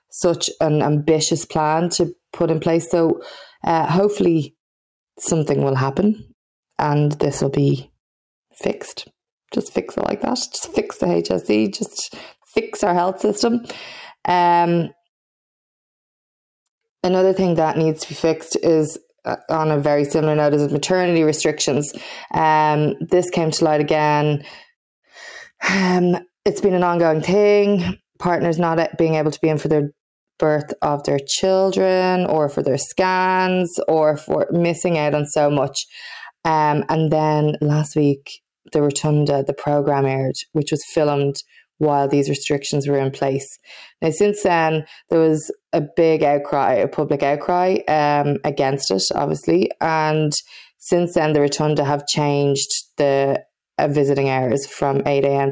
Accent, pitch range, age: Irish, 145-175 Hz, 20-39